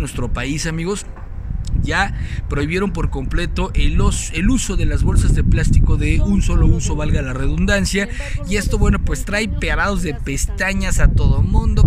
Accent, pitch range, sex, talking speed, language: Mexican, 85-110 Hz, male, 170 wpm, Spanish